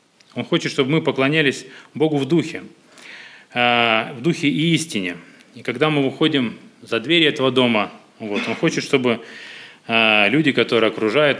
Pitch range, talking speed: 115-155 Hz, 135 wpm